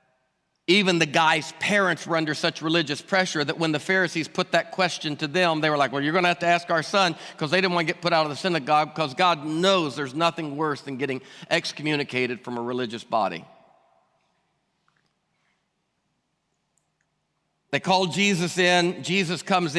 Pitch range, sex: 160-205 Hz, male